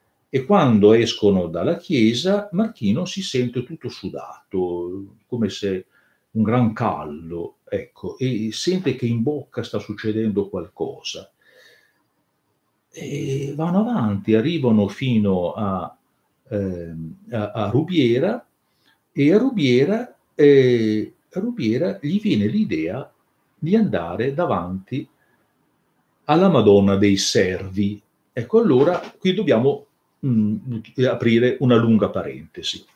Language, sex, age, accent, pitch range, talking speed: Italian, male, 50-69, native, 105-150 Hz, 105 wpm